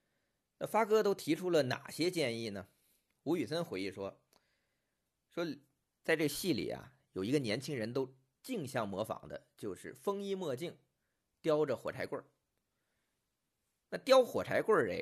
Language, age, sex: Chinese, 50-69, male